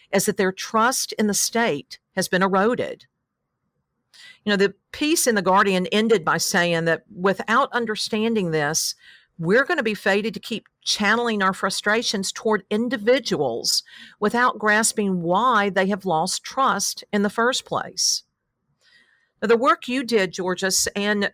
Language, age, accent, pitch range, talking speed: English, 50-69, American, 180-220 Hz, 150 wpm